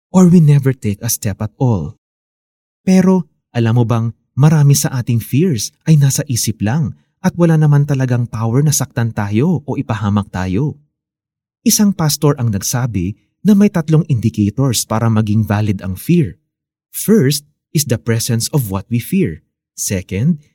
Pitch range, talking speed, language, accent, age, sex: 105-150 Hz, 155 wpm, Filipino, native, 30-49, male